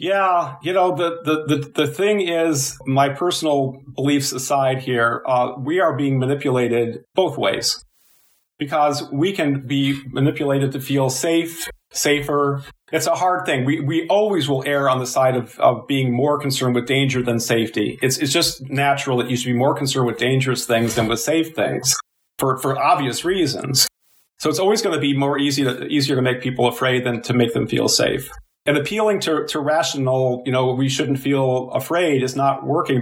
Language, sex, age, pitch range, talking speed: English, male, 40-59, 125-145 Hz, 195 wpm